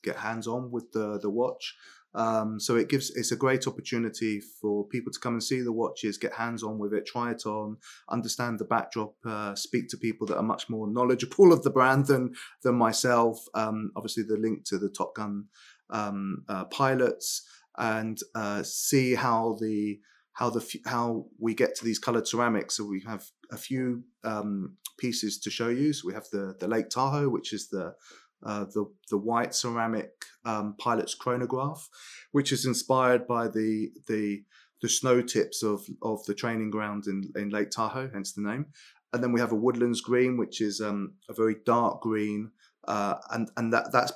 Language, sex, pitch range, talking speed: English, male, 105-125 Hz, 195 wpm